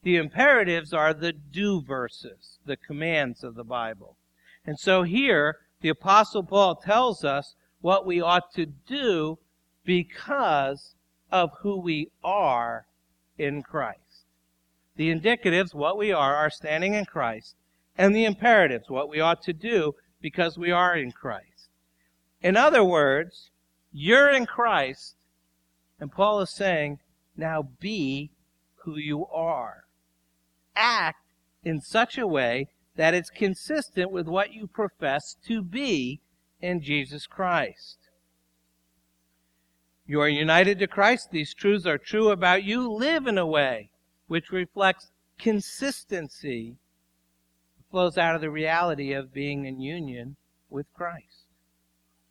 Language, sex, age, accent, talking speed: English, male, 50-69, American, 130 wpm